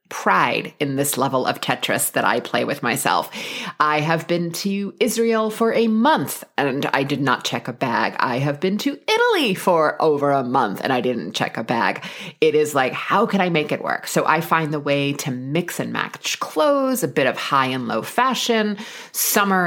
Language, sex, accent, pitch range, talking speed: English, female, American, 145-215 Hz, 205 wpm